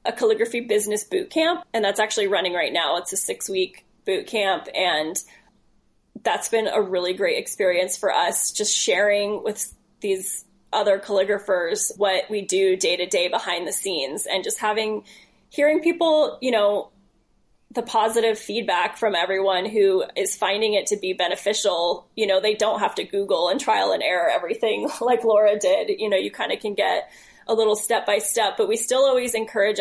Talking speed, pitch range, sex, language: 185 wpm, 200-265 Hz, female, English